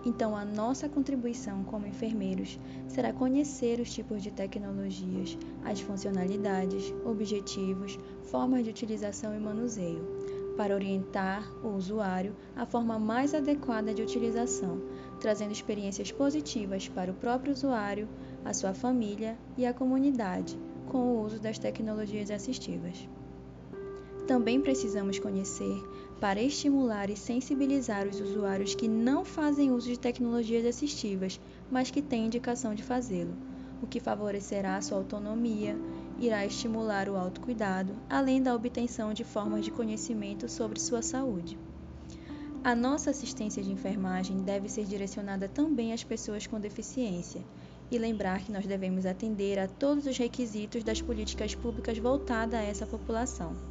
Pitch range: 195-240 Hz